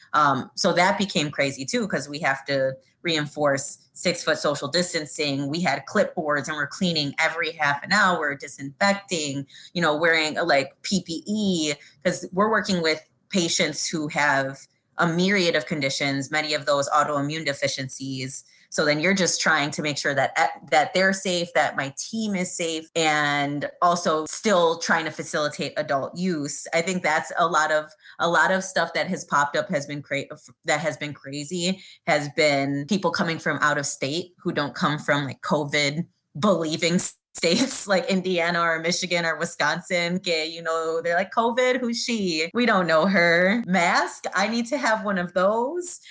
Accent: American